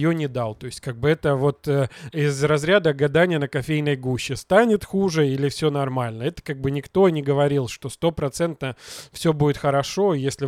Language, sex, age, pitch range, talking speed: Russian, male, 20-39, 140-175 Hz, 190 wpm